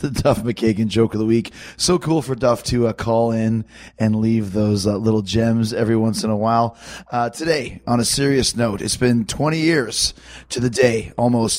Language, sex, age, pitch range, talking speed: English, male, 20-39, 115-140 Hz, 205 wpm